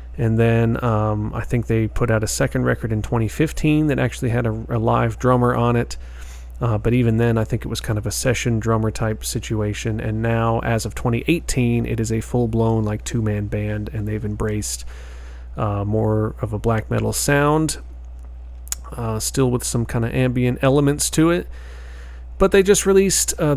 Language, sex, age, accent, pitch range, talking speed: English, male, 30-49, American, 110-135 Hz, 190 wpm